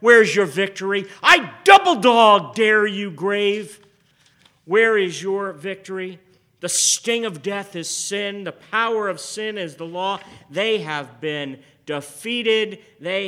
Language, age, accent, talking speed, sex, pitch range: English, 50-69, American, 135 wpm, male, 150-195 Hz